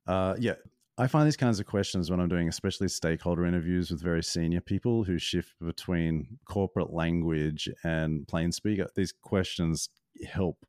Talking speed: 165 wpm